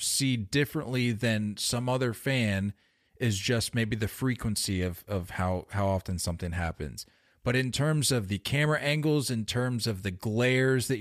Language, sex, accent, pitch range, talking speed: English, male, American, 105-140 Hz, 170 wpm